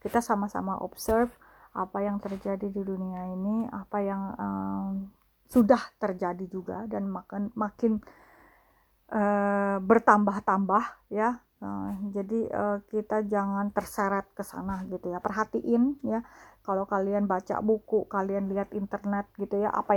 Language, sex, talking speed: English, female, 130 wpm